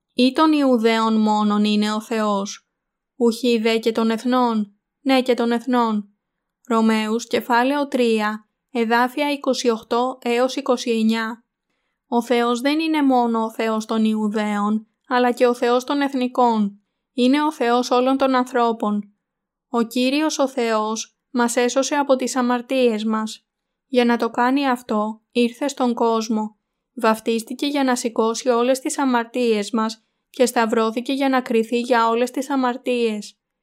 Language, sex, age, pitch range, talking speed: Greek, female, 20-39, 220-255 Hz, 140 wpm